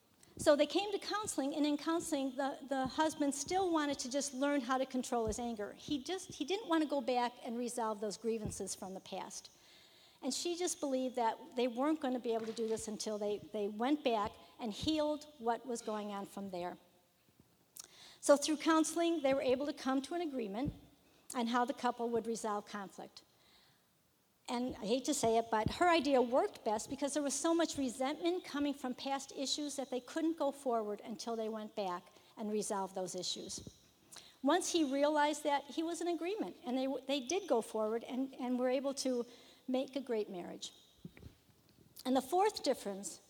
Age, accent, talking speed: 50-69, American, 195 wpm